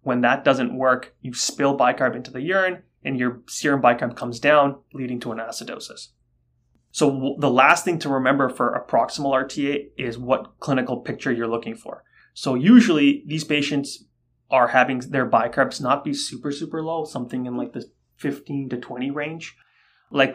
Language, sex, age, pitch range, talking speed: English, male, 20-39, 120-145 Hz, 175 wpm